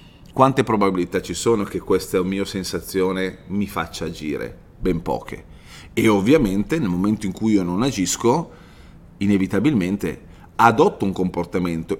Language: Italian